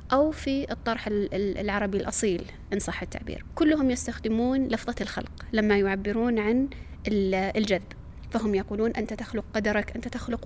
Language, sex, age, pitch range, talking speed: Arabic, female, 20-39, 205-245 Hz, 130 wpm